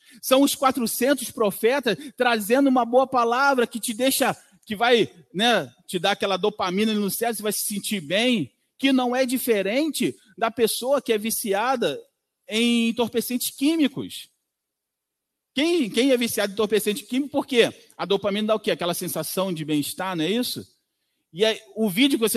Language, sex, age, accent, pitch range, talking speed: Portuguese, male, 40-59, Brazilian, 185-245 Hz, 170 wpm